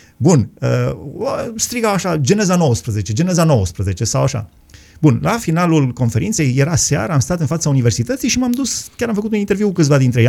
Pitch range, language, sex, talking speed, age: 115-160 Hz, Romanian, male, 185 wpm, 30-49